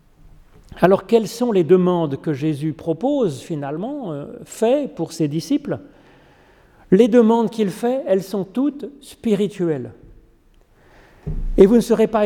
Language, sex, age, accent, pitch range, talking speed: French, male, 40-59, French, 165-225 Hz, 130 wpm